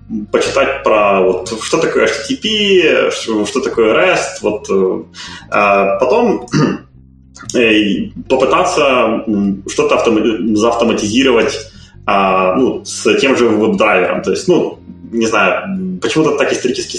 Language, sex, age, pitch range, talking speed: Ukrainian, male, 20-39, 95-130 Hz, 115 wpm